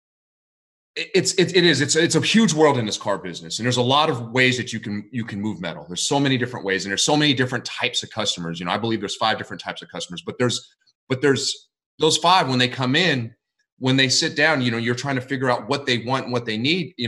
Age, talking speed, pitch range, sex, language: 30-49, 275 wpm, 110-140 Hz, male, English